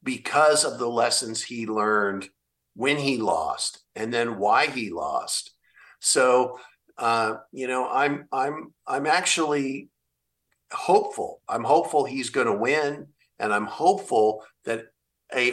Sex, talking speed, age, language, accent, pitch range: male, 130 wpm, 50-69, English, American, 115-160 Hz